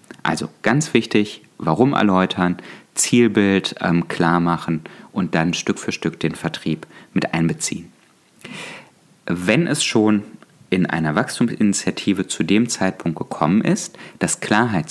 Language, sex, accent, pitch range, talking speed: German, male, German, 85-130 Hz, 125 wpm